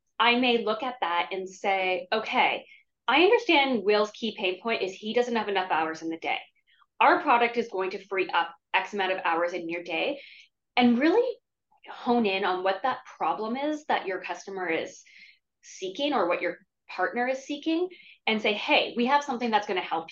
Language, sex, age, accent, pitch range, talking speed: English, female, 20-39, American, 190-280 Hz, 200 wpm